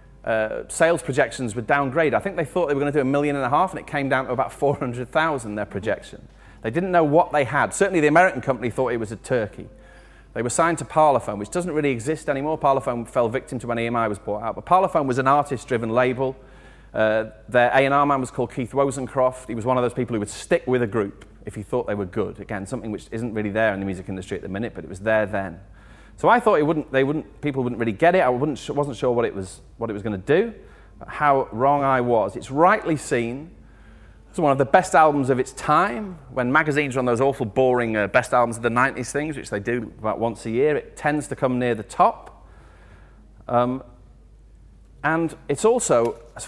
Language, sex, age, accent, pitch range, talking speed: English, male, 30-49, British, 115-150 Hz, 240 wpm